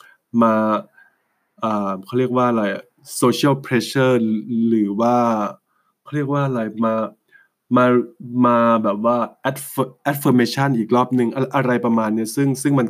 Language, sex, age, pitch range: English, male, 20-39, 110-125 Hz